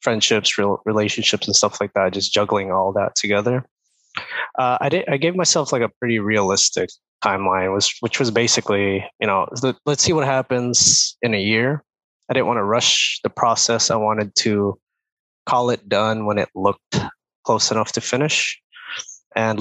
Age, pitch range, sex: 20-39, 100-130 Hz, male